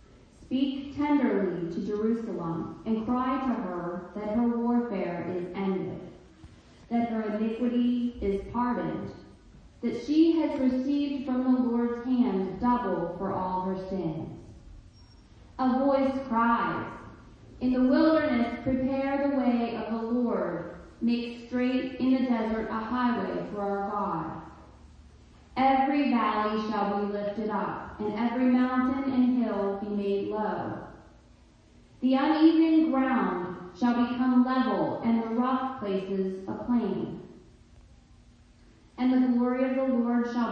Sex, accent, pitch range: female, American, 200-260 Hz